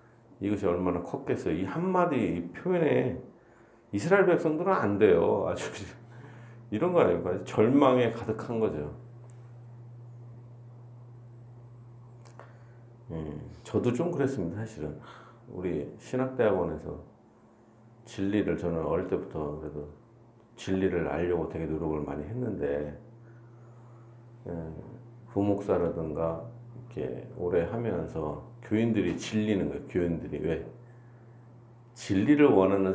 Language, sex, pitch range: Korean, male, 100-120 Hz